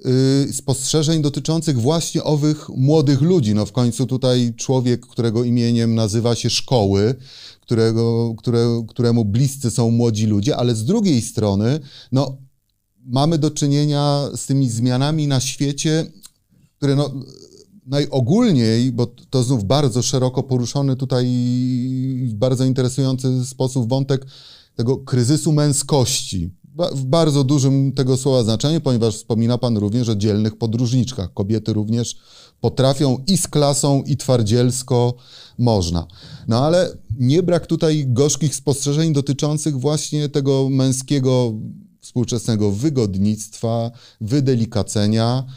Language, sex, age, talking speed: Polish, male, 30-49, 120 wpm